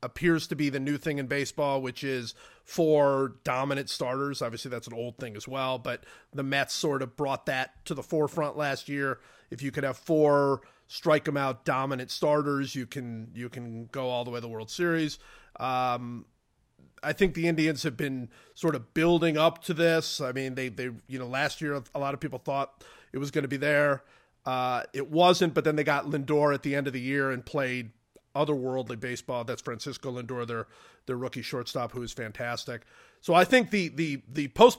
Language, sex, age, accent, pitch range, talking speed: English, male, 30-49, American, 125-155 Hz, 210 wpm